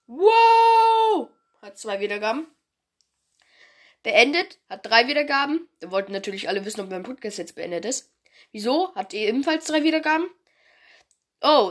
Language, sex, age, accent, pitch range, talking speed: German, female, 10-29, German, 225-295 Hz, 135 wpm